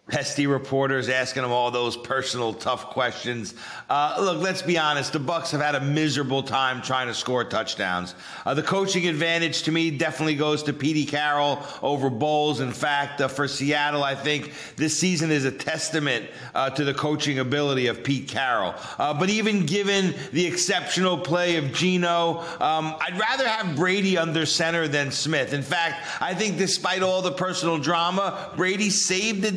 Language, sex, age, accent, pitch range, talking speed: English, male, 50-69, American, 145-180 Hz, 180 wpm